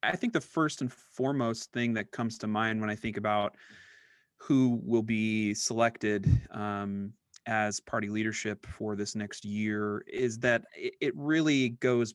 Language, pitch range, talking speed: English, 105-120 Hz, 160 wpm